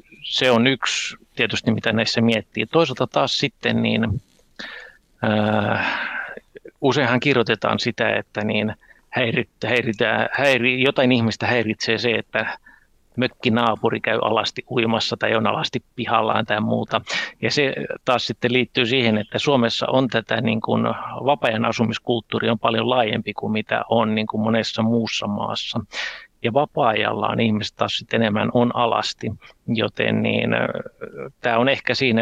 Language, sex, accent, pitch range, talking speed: Finnish, male, native, 110-120 Hz, 130 wpm